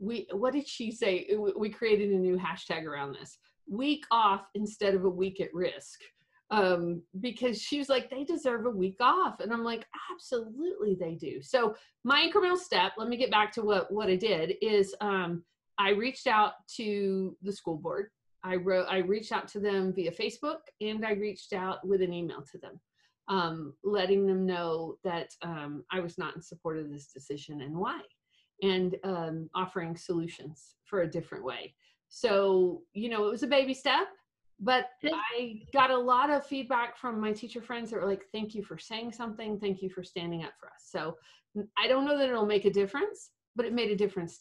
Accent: American